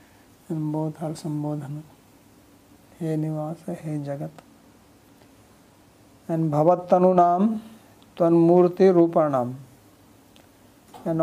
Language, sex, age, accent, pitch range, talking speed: English, male, 50-69, Indian, 115-165 Hz, 85 wpm